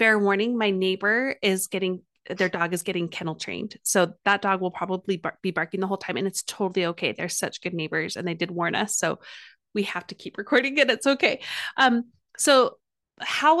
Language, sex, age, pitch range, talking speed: English, female, 30-49, 175-220 Hz, 210 wpm